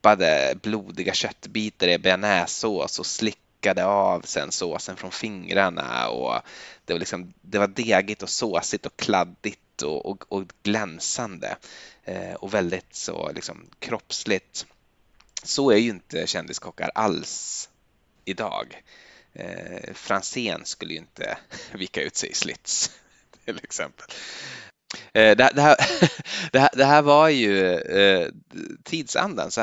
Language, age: Swedish, 20-39